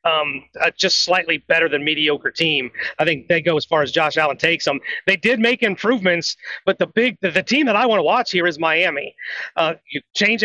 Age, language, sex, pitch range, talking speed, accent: 30-49, English, male, 170-220 Hz, 230 wpm, American